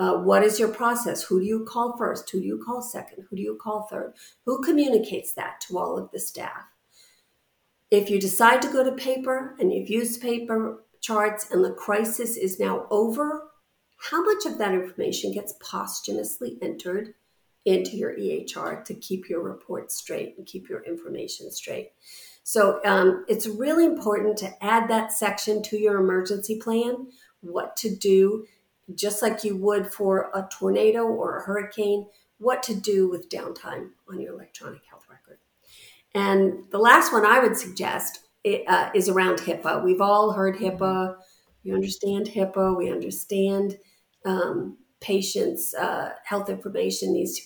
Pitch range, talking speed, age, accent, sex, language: 195-235 Hz, 165 wpm, 50-69, American, female, English